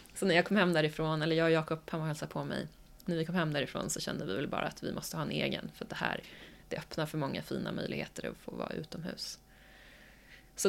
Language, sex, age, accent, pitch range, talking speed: English, female, 20-39, Swedish, 170-250 Hz, 260 wpm